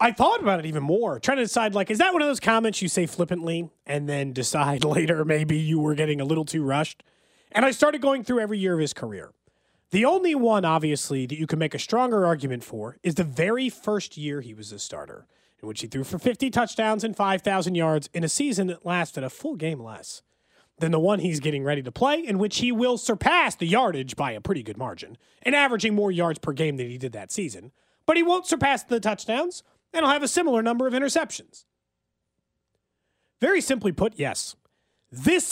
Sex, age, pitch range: male, 30-49, 160-255 Hz